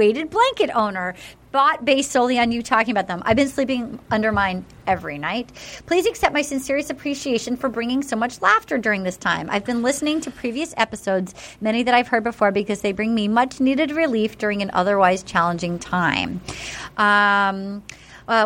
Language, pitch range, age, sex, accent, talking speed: English, 210-275 Hz, 30-49, female, American, 180 wpm